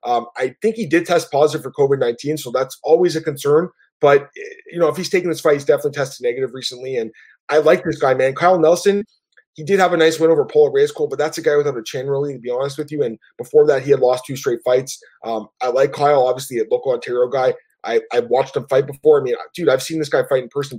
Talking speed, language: 270 wpm, English